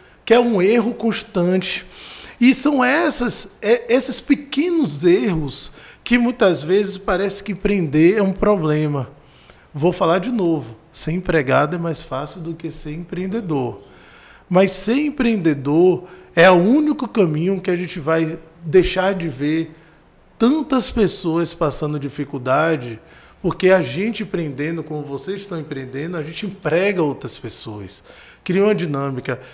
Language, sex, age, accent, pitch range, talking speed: Portuguese, male, 20-39, Brazilian, 150-205 Hz, 135 wpm